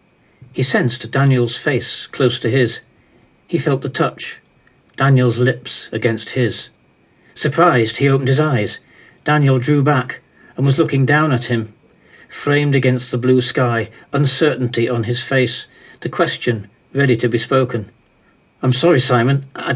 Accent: British